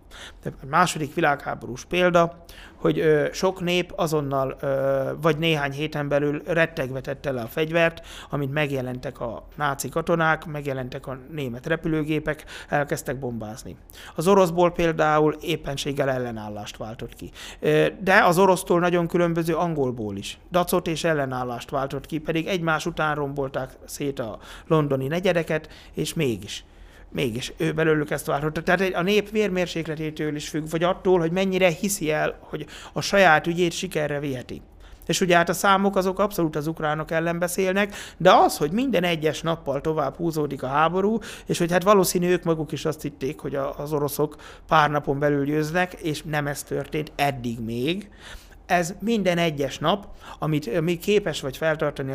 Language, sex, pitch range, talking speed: Hungarian, male, 140-175 Hz, 150 wpm